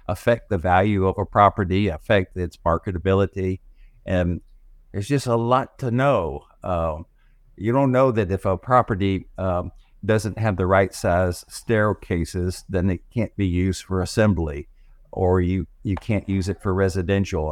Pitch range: 90-105 Hz